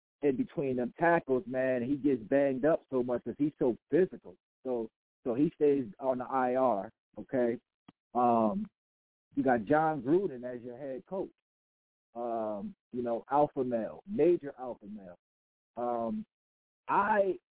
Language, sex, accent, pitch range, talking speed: English, male, American, 125-175 Hz, 145 wpm